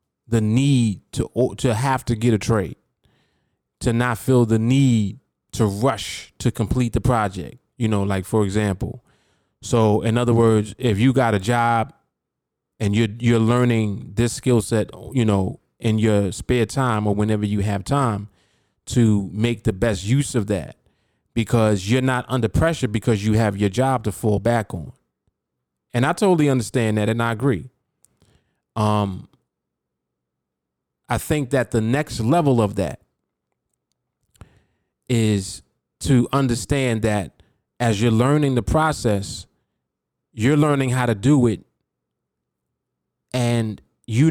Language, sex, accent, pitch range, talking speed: English, male, American, 105-125 Hz, 145 wpm